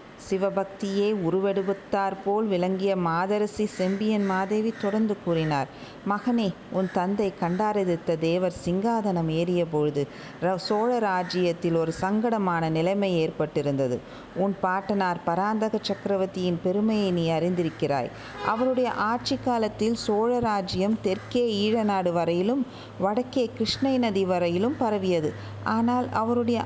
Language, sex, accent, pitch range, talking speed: Tamil, female, native, 175-215 Hz, 95 wpm